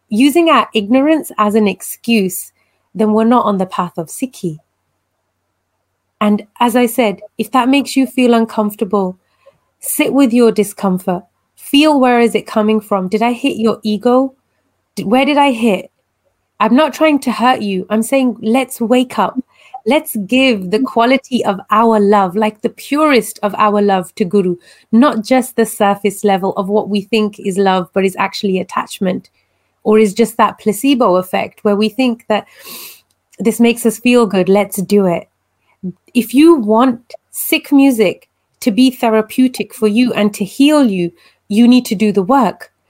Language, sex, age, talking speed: English, female, 30-49, 170 wpm